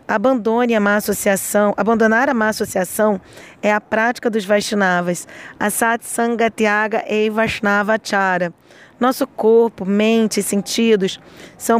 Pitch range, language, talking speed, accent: 205-230 Hz, Portuguese, 115 wpm, Brazilian